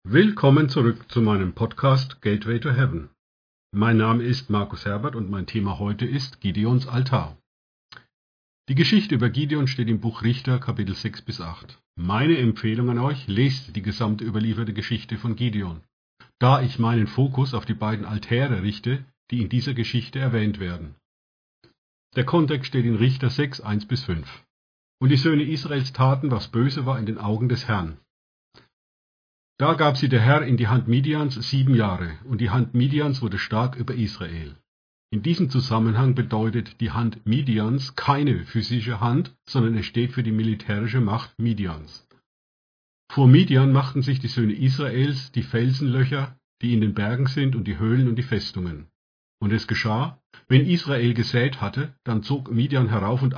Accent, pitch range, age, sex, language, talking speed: German, 105-130 Hz, 50-69, male, German, 165 wpm